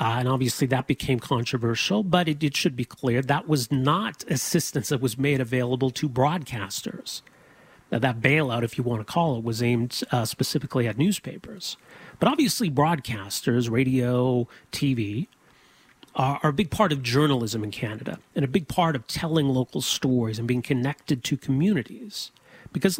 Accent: American